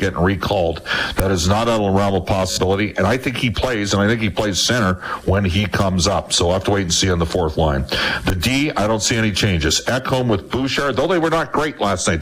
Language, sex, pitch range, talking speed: English, male, 90-110 Hz, 255 wpm